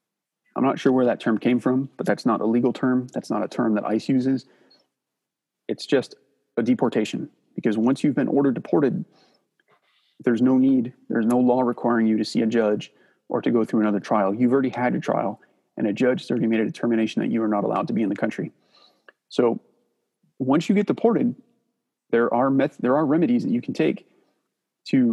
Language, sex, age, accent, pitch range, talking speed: English, male, 30-49, American, 110-135 Hz, 210 wpm